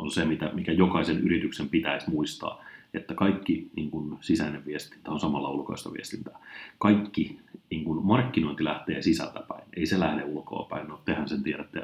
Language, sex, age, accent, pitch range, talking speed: Finnish, male, 30-49, native, 80-95 Hz, 145 wpm